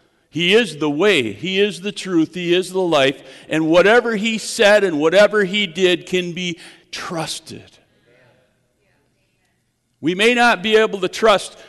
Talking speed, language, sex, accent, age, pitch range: 155 wpm, English, male, American, 50-69, 155-230 Hz